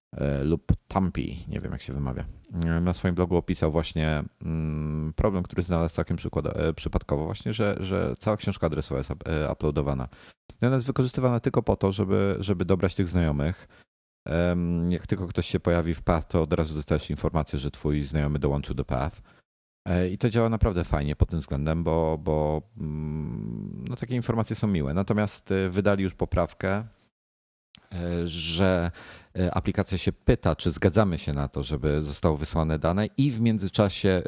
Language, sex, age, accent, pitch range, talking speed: Polish, male, 40-59, native, 80-95 Hz, 155 wpm